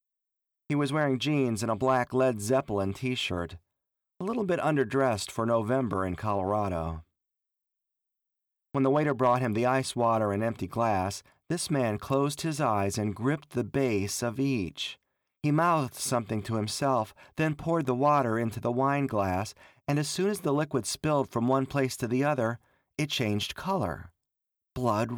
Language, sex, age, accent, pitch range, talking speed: English, male, 40-59, American, 105-140 Hz, 165 wpm